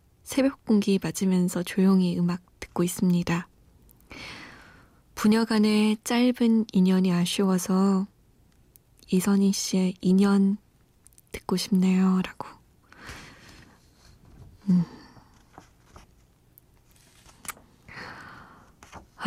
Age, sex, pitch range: 20-39, female, 185-210 Hz